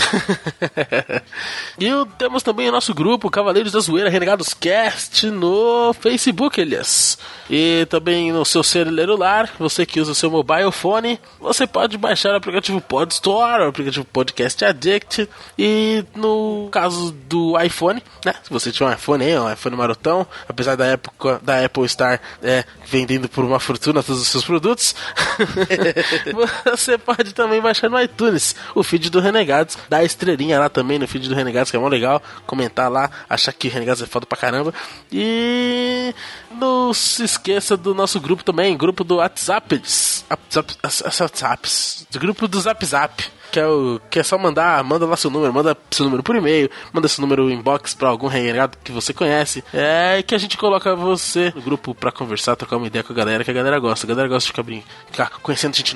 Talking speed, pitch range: 185 wpm, 130-200 Hz